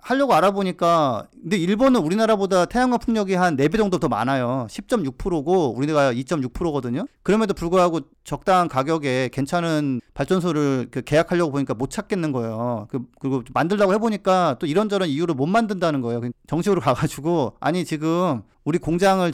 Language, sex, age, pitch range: Korean, male, 40-59, 130-195 Hz